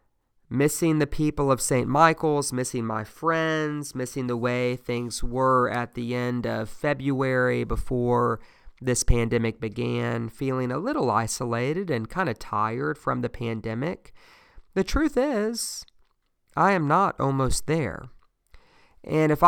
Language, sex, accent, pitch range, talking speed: English, male, American, 115-155 Hz, 135 wpm